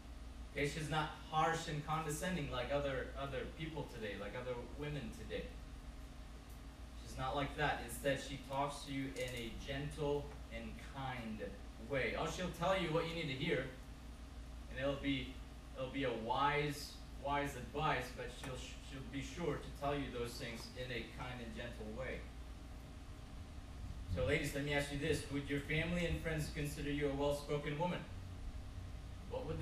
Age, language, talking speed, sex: 30-49, English, 170 wpm, male